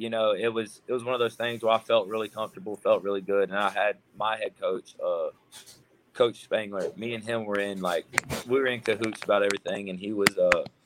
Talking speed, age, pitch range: 240 wpm, 30-49, 95-110 Hz